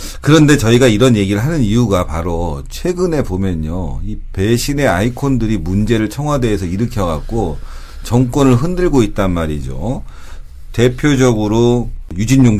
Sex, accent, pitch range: male, native, 85-130 Hz